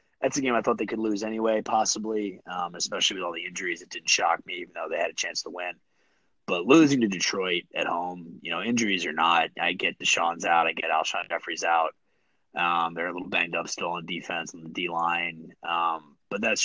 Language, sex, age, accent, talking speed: English, male, 30-49, American, 225 wpm